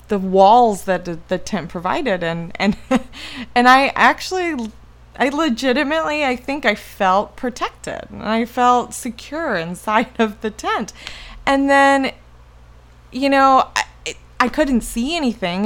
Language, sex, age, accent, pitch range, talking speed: English, female, 20-39, American, 175-245 Hz, 140 wpm